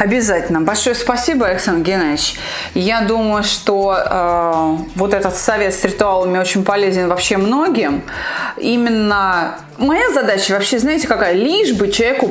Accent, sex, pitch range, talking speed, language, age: native, female, 185-250 Hz, 130 wpm, Russian, 20-39